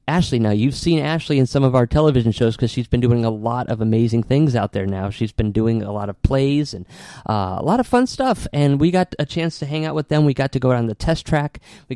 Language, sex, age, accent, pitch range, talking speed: English, male, 30-49, American, 115-150 Hz, 280 wpm